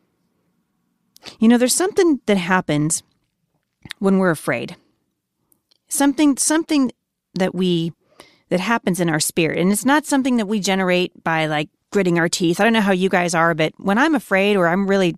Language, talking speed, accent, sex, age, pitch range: English, 175 wpm, American, female, 30-49, 170-230 Hz